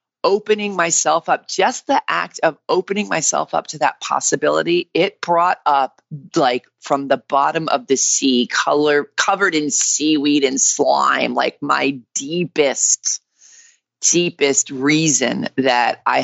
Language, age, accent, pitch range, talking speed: English, 30-49, American, 130-160 Hz, 135 wpm